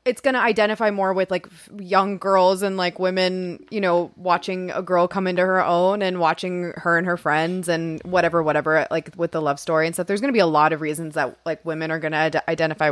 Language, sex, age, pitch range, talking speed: English, female, 20-39, 170-215 Hz, 240 wpm